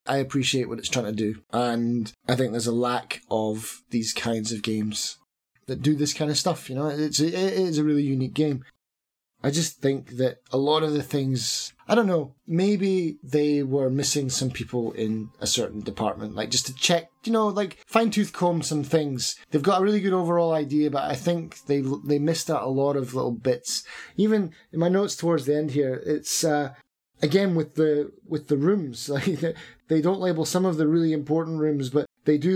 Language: English